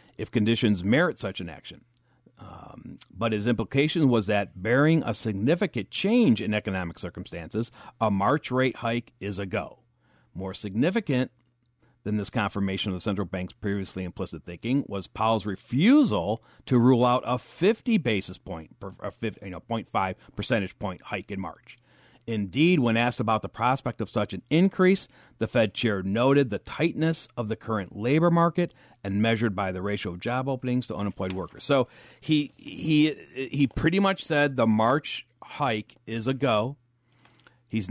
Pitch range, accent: 105-135 Hz, American